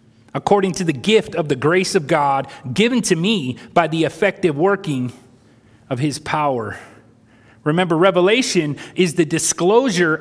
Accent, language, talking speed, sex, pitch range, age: American, English, 140 wpm, male, 140-200 Hz, 30-49